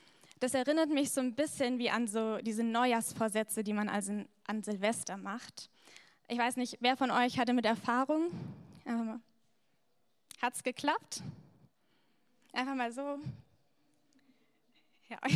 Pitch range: 220-255 Hz